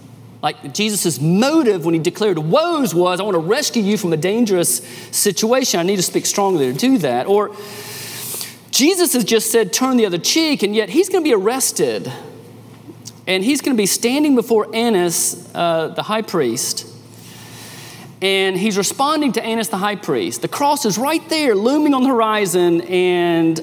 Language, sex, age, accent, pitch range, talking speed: English, male, 30-49, American, 150-225 Hz, 180 wpm